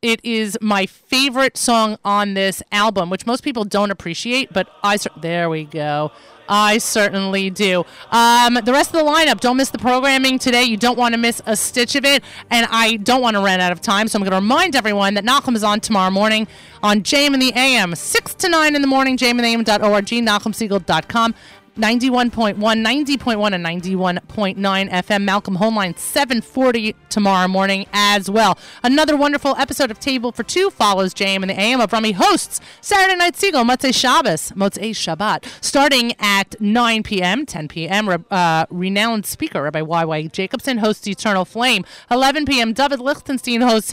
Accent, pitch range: American, 195-260 Hz